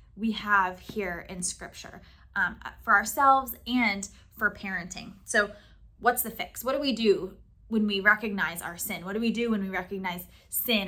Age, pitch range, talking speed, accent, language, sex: 20-39, 180-225 Hz, 175 wpm, American, English, female